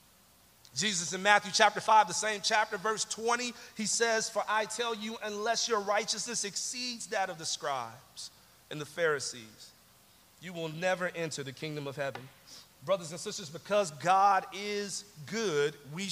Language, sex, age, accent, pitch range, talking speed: English, male, 40-59, American, 170-235 Hz, 160 wpm